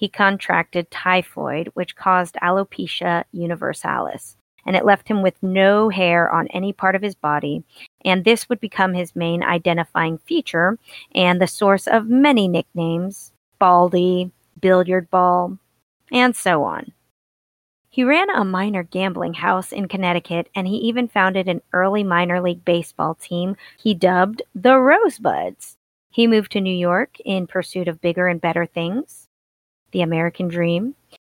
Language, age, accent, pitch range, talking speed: English, 30-49, American, 175-210 Hz, 150 wpm